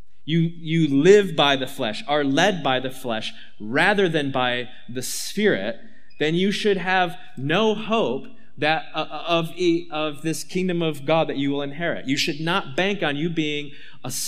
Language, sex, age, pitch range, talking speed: English, male, 30-49, 140-195 Hz, 175 wpm